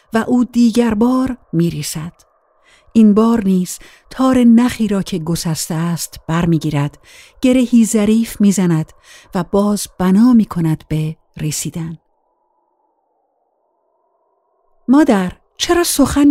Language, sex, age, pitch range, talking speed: Persian, female, 50-69, 190-310 Hz, 105 wpm